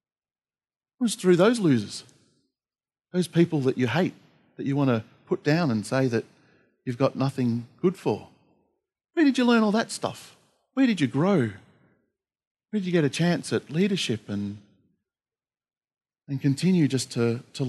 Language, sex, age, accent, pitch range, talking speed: English, male, 40-59, Australian, 130-195 Hz, 165 wpm